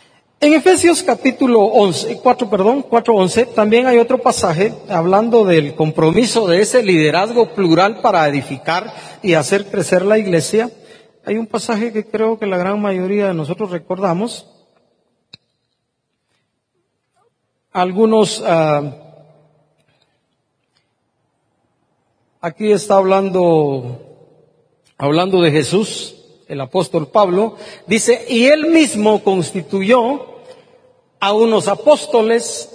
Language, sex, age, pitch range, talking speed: Spanish, male, 50-69, 180-235 Hz, 105 wpm